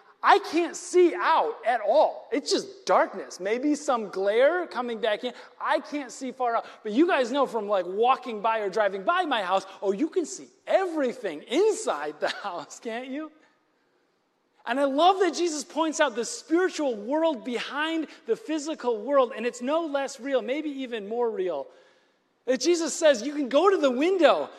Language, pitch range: English, 240-325 Hz